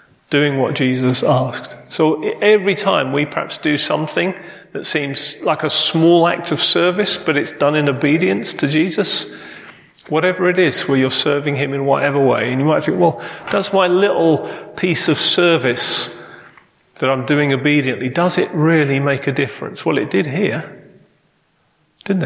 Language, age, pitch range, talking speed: English, 30-49, 135-165 Hz, 165 wpm